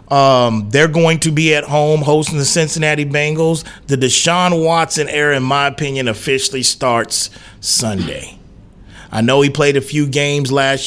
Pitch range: 125-160 Hz